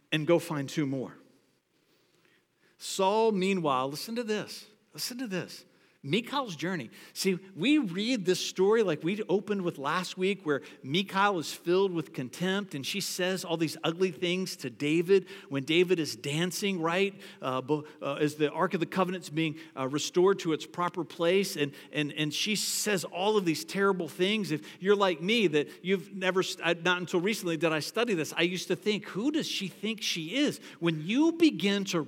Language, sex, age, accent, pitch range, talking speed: English, male, 50-69, American, 175-265 Hz, 185 wpm